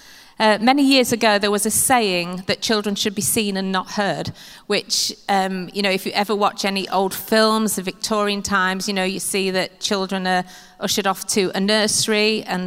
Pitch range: 190-215 Hz